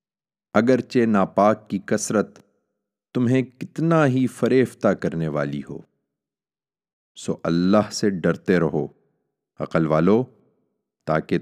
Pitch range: 90-130 Hz